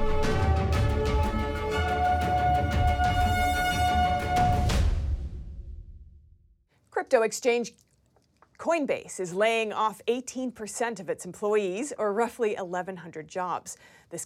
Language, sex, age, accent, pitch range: English, female, 30-49, American, 165-245 Hz